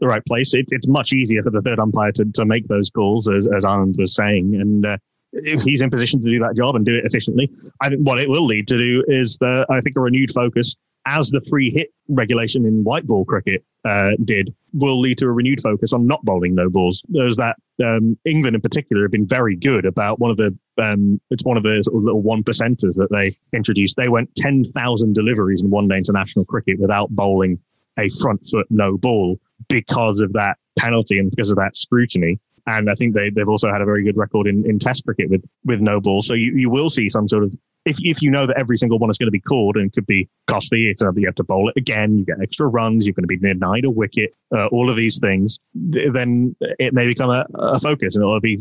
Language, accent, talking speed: English, British, 250 wpm